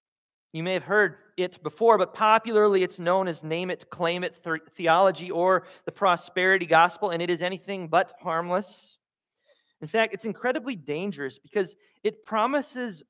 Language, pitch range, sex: English, 165-210 Hz, male